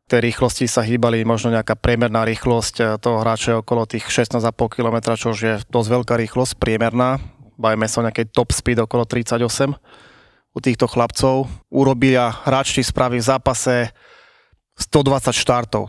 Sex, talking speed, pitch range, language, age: male, 145 wpm, 115-130 Hz, Slovak, 30-49